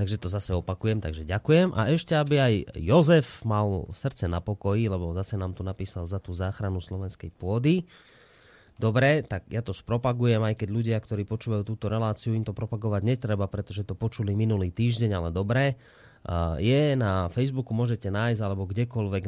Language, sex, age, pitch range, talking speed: Slovak, male, 20-39, 100-130 Hz, 170 wpm